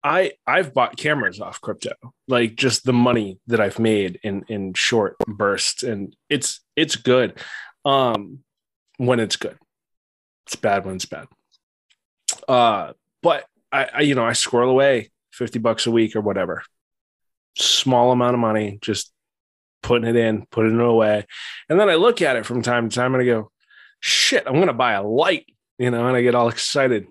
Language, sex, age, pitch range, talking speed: English, male, 20-39, 105-125 Hz, 180 wpm